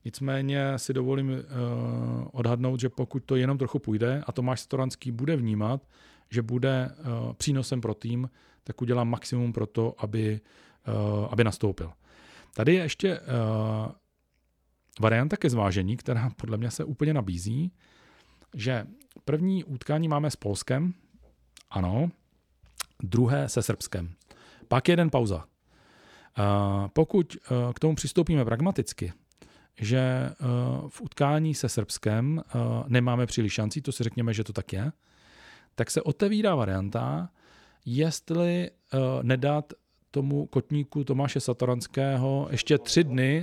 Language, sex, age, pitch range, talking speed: Czech, male, 40-59, 110-140 Hz, 130 wpm